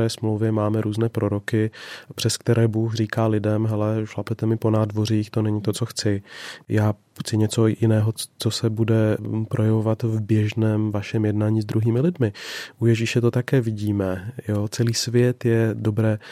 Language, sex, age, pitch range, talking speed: Czech, male, 30-49, 110-125 Hz, 160 wpm